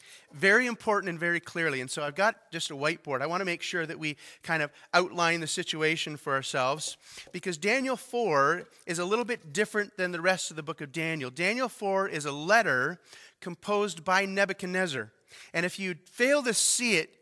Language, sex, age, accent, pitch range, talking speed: English, male, 30-49, American, 155-195 Hz, 200 wpm